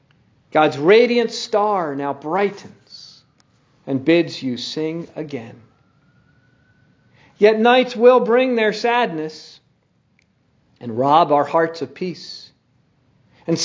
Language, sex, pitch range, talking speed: English, male, 150-210 Hz, 100 wpm